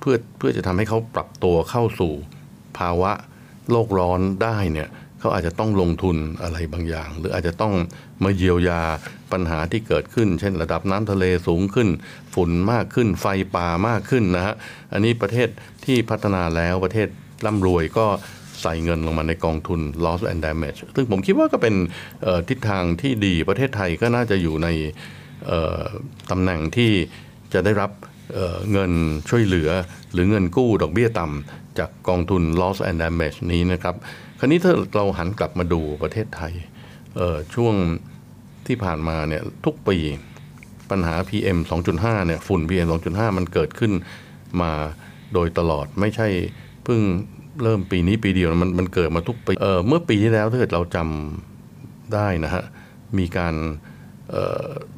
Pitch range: 85-110 Hz